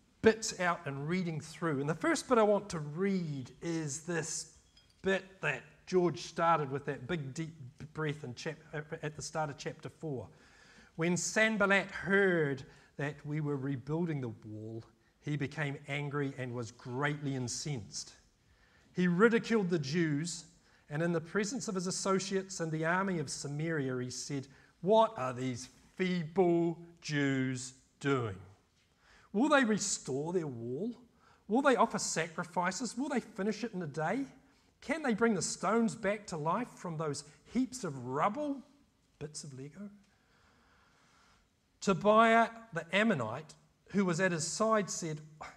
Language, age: English, 40-59